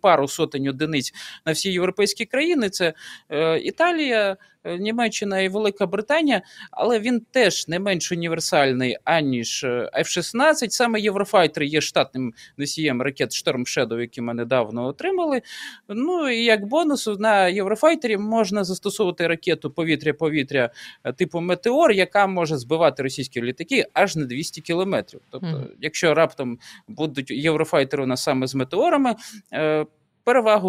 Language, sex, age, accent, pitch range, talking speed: Ukrainian, male, 20-39, native, 155-215 Hz, 125 wpm